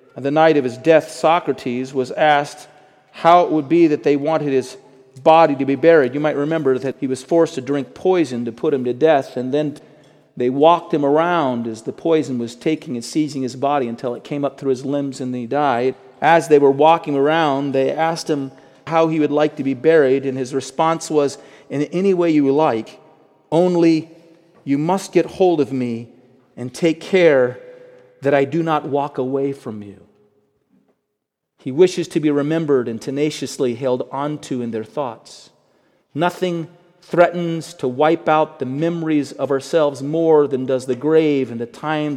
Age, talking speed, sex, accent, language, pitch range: 40-59, 185 wpm, male, American, English, 135-165 Hz